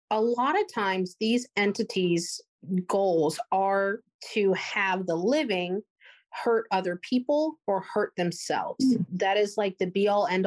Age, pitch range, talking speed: 30-49, 185-235 Hz, 145 wpm